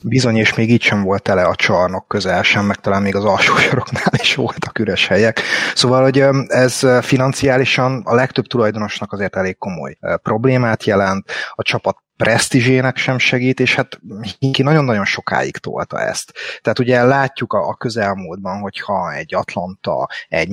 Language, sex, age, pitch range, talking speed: Hungarian, male, 30-49, 105-130 Hz, 160 wpm